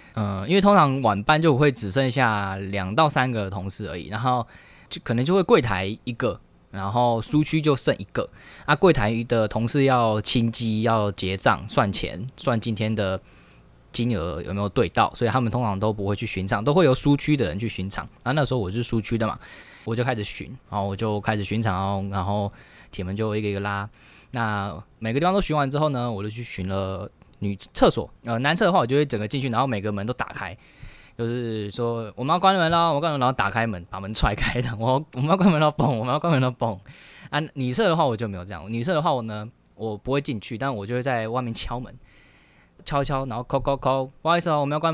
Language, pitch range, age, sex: Chinese, 105-140 Hz, 20-39, male